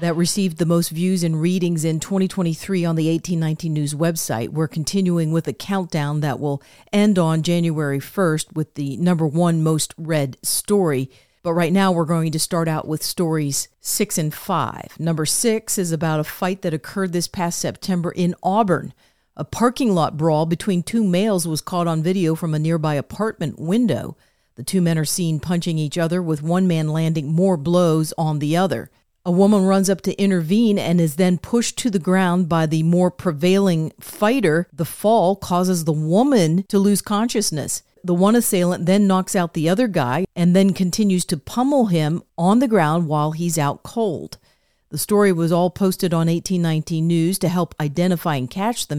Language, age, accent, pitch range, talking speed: English, 50-69, American, 155-185 Hz, 185 wpm